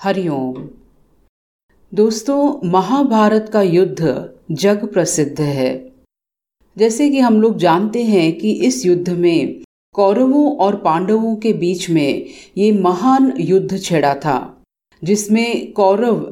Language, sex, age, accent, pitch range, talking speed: Hindi, female, 40-59, native, 165-235 Hz, 115 wpm